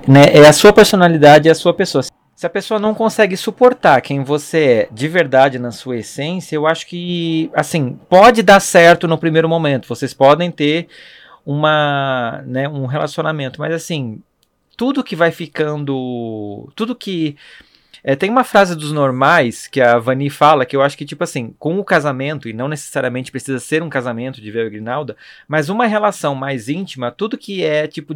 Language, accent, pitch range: Portuguese, Brazilian, 135-175 Hz